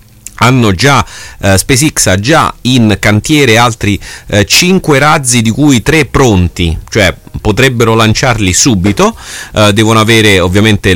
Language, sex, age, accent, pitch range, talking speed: Italian, male, 30-49, native, 95-130 Hz, 130 wpm